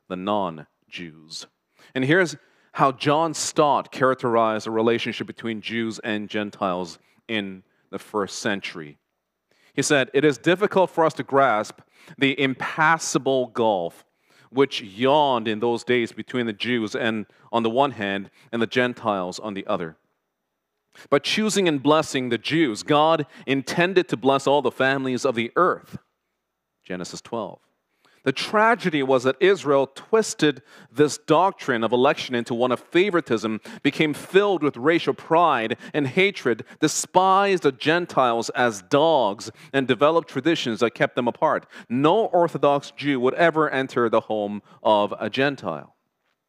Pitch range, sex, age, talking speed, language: 115-160 Hz, male, 40-59, 145 wpm, English